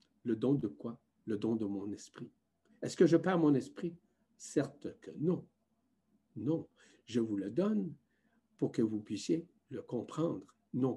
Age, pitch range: 50-69, 120-195 Hz